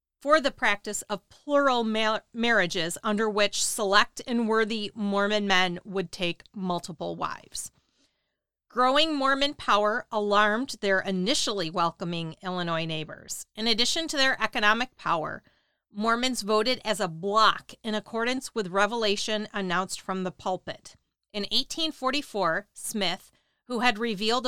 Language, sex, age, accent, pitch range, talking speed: English, female, 40-59, American, 190-240 Hz, 125 wpm